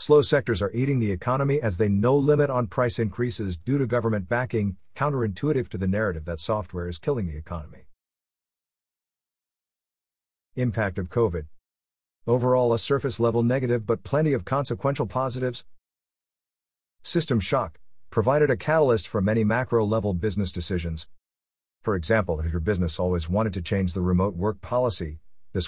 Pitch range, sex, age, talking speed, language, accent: 85-120 Hz, male, 50-69, 145 wpm, English, American